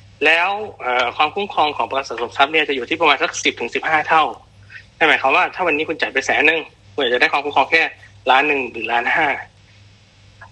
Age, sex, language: 20-39, male, Thai